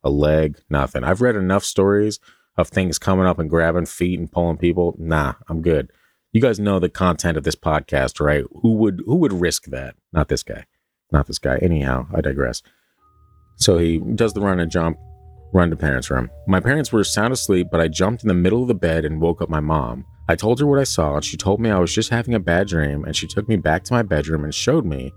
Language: English